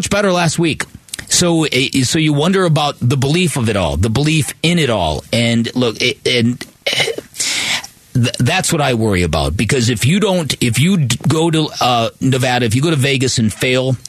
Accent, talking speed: American, 185 wpm